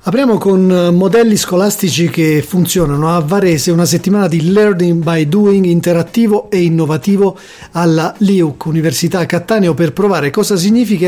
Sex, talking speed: male, 135 wpm